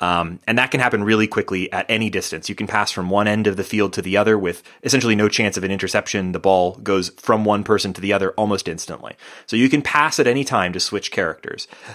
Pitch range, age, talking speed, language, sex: 95-120 Hz, 30-49, 250 wpm, English, male